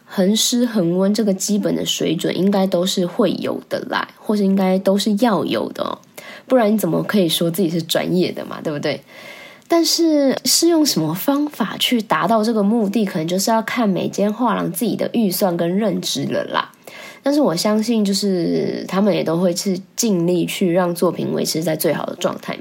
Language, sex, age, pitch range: Chinese, female, 20-39, 180-225 Hz